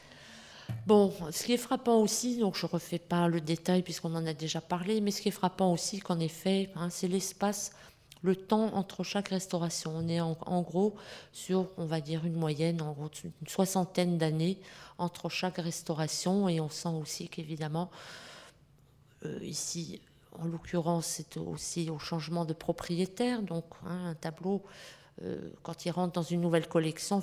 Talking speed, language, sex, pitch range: 170 wpm, French, female, 160-185 Hz